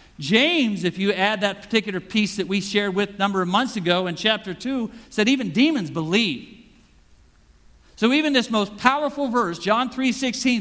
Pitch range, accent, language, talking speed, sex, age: 185-245 Hz, American, English, 180 wpm, male, 50-69